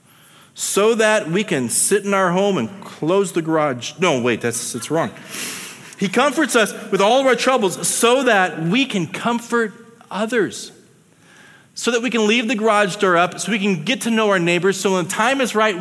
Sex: male